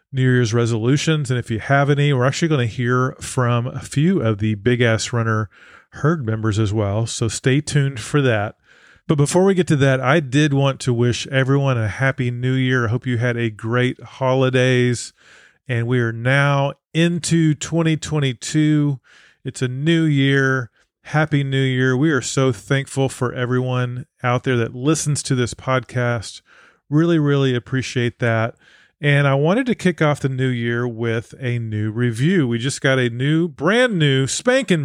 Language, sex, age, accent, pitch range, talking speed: English, male, 30-49, American, 120-145 Hz, 180 wpm